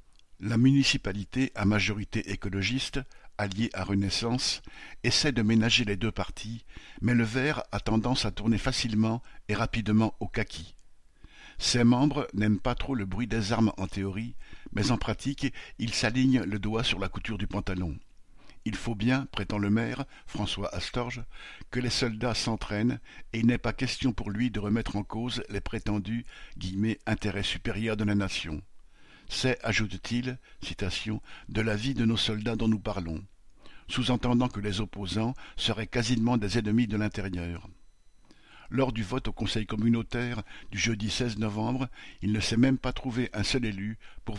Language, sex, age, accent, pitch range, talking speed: French, male, 60-79, French, 100-120 Hz, 170 wpm